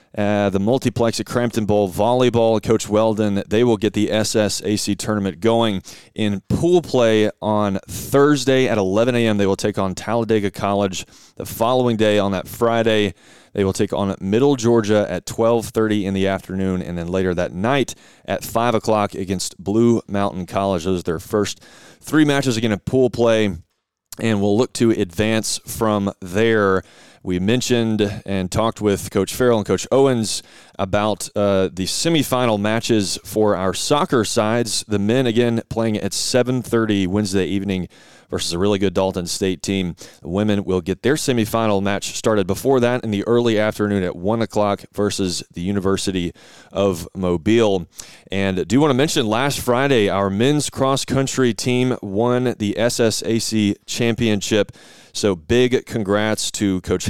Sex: male